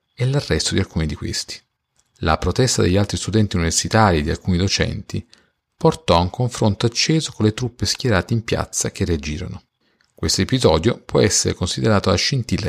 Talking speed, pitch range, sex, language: 170 wpm, 90-115 Hz, male, Italian